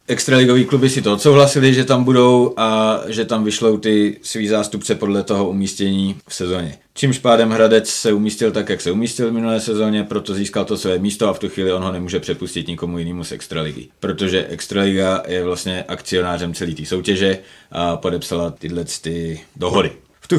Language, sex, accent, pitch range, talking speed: Czech, male, native, 90-110 Hz, 190 wpm